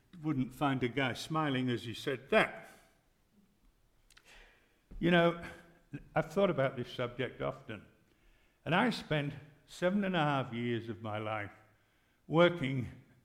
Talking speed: 130 wpm